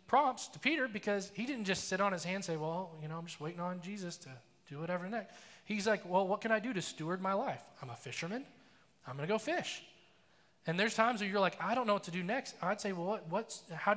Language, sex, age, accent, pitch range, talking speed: English, male, 20-39, American, 160-210 Hz, 270 wpm